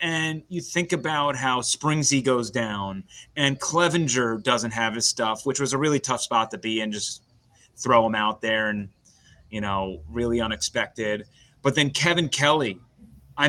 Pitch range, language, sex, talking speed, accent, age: 120-170 Hz, English, male, 170 wpm, American, 30-49